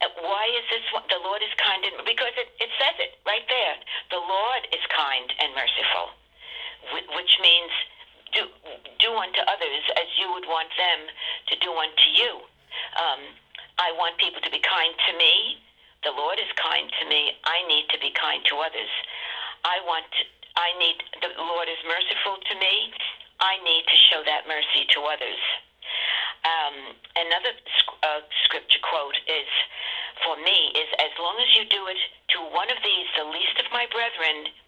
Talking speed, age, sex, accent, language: 175 wpm, 60-79, female, American, English